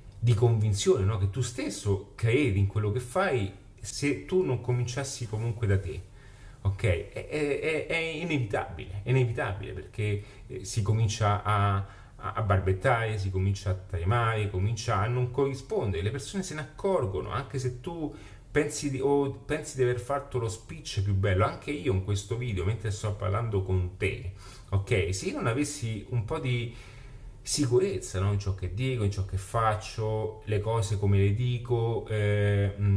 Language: Italian